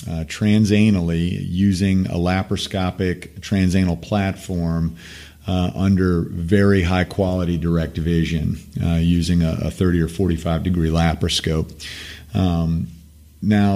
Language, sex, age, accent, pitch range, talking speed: English, male, 40-59, American, 85-95 Hz, 110 wpm